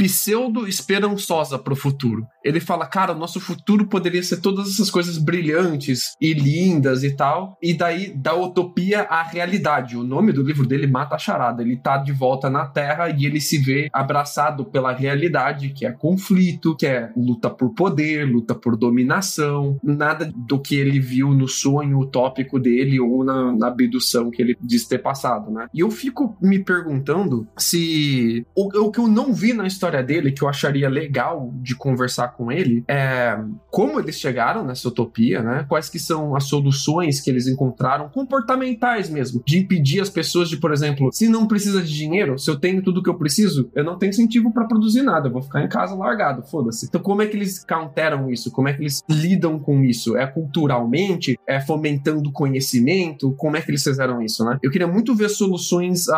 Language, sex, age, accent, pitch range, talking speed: Portuguese, male, 20-39, Brazilian, 130-185 Hz, 195 wpm